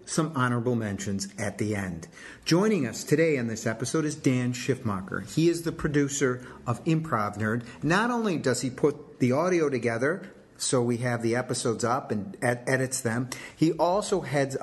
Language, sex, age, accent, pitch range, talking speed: English, male, 50-69, American, 115-145 Hz, 170 wpm